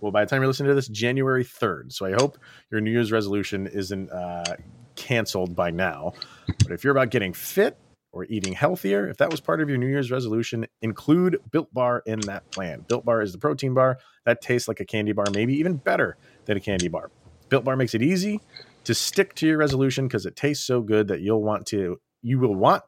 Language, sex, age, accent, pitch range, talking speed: English, male, 30-49, American, 100-130 Hz, 230 wpm